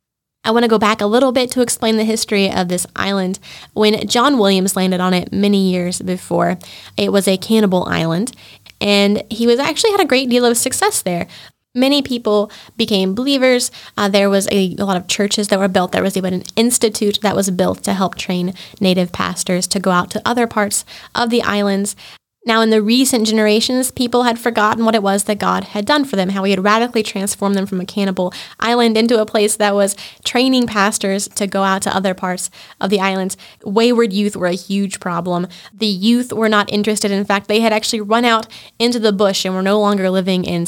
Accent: American